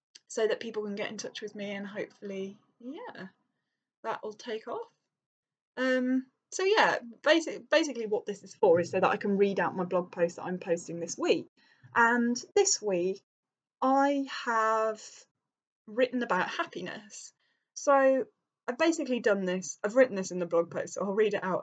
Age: 10-29